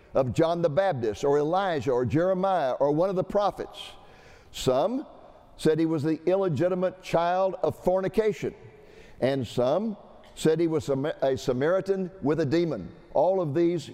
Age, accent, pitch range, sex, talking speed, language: 60-79, American, 150-190 Hz, male, 150 wpm, English